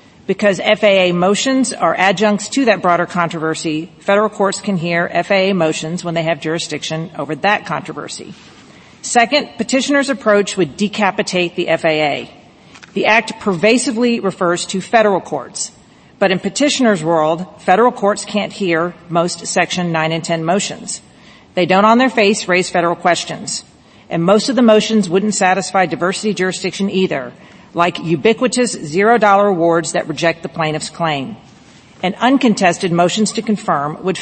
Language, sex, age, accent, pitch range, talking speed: English, female, 40-59, American, 170-210 Hz, 145 wpm